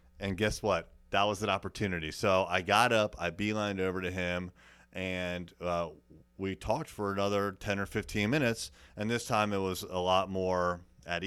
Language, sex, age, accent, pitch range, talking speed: English, male, 30-49, American, 90-110 Hz, 185 wpm